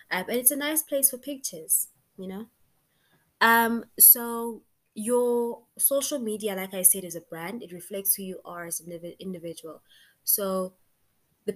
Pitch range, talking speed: 170-210 Hz, 160 wpm